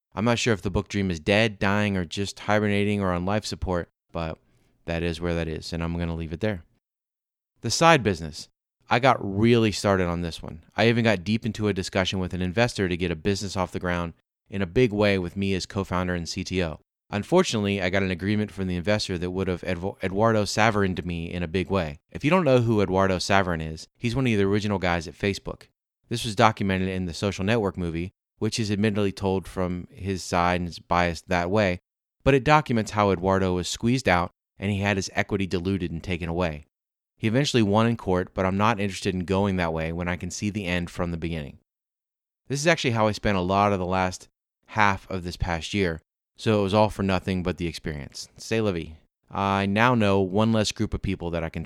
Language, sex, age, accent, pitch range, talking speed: English, male, 30-49, American, 90-105 Hz, 230 wpm